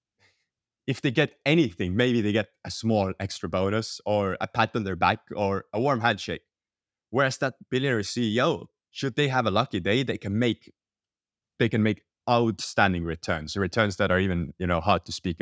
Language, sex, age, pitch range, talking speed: English, male, 20-39, 95-120 Hz, 185 wpm